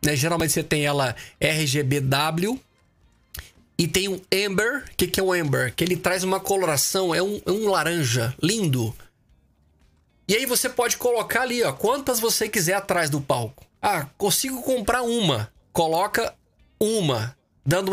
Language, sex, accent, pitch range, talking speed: Portuguese, male, Brazilian, 145-200 Hz, 145 wpm